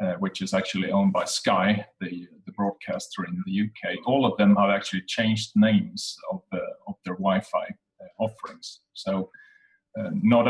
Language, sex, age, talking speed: English, male, 30-49, 170 wpm